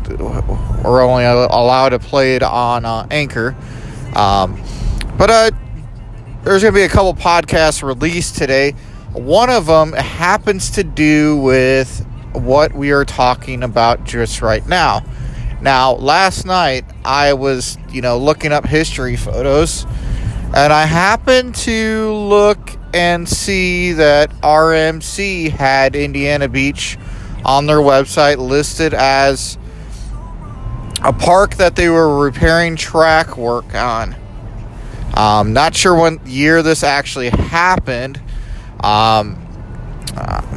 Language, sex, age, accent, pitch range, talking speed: English, male, 30-49, American, 115-150 Hz, 125 wpm